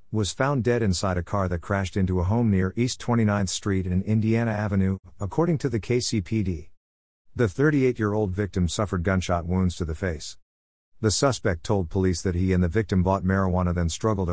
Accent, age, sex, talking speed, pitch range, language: American, 50-69, male, 185 wpm, 90-110 Hz, English